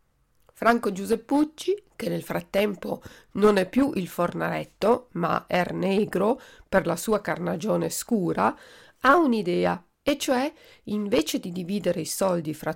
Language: Italian